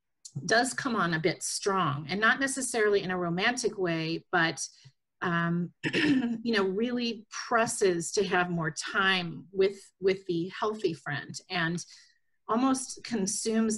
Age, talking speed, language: 40-59, 135 wpm, English